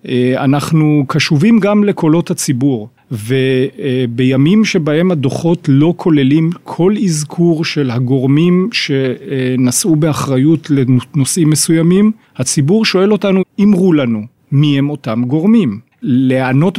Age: 40-59